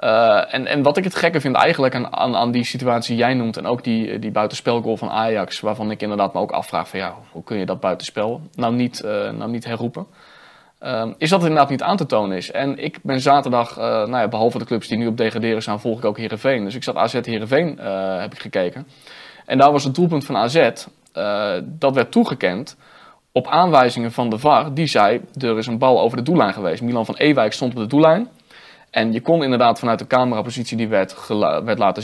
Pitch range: 115-155 Hz